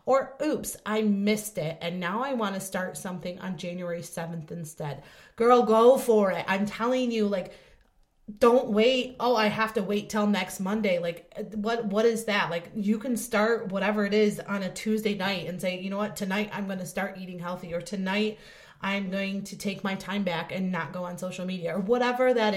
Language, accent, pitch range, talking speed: English, American, 180-220 Hz, 215 wpm